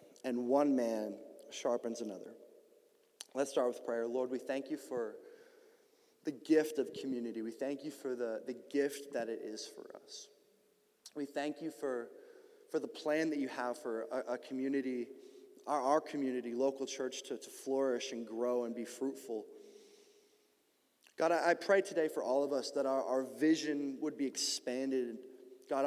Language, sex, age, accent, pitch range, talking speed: English, male, 20-39, American, 120-155 Hz, 170 wpm